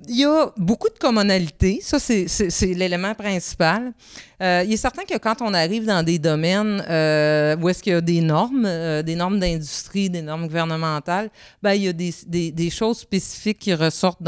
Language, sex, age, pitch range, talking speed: French, female, 30-49, 165-200 Hz, 205 wpm